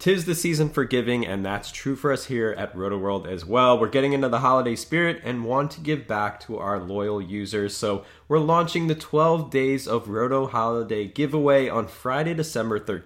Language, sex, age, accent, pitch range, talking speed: English, male, 20-39, American, 100-140 Hz, 200 wpm